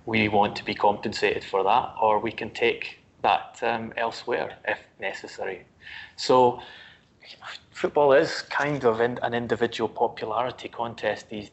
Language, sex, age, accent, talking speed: English, male, 30-49, British, 135 wpm